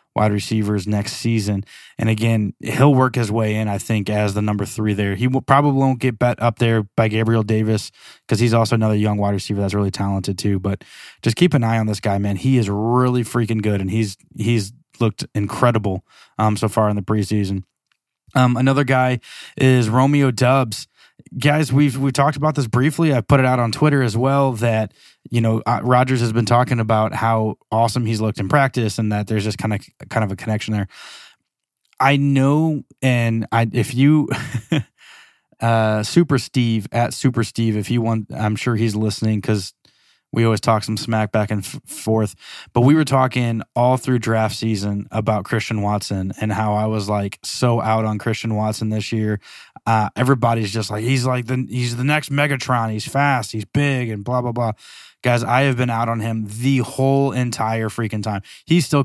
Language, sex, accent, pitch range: English, male, American, 105-130 Hz